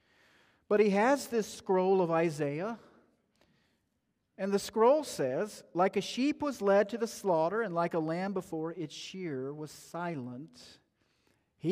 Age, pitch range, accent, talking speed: 40-59, 160-210 Hz, American, 150 wpm